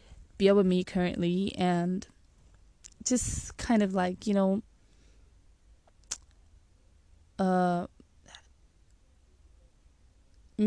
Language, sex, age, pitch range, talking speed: English, female, 20-39, 170-210 Hz, 65 wpm